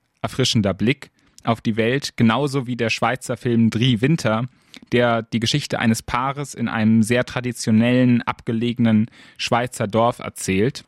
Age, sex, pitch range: 10-29, male, 115-135 Hz